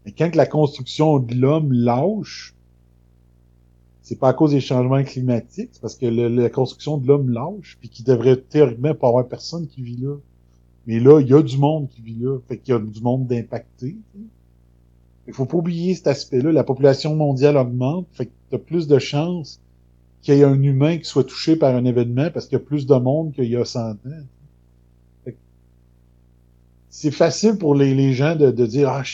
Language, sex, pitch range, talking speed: French, male, 110-145 Hz, 210 wpm